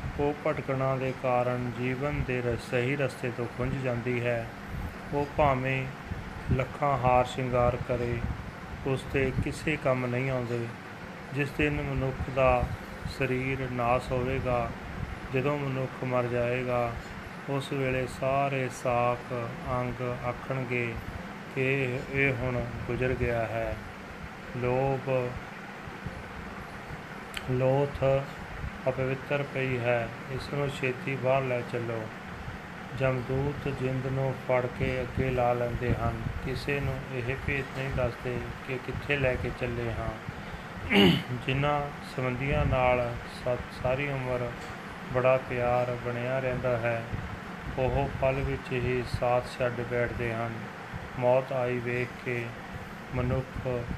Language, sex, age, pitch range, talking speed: Punjabi, male, 30-49, 120-135 Hz, 115 wpm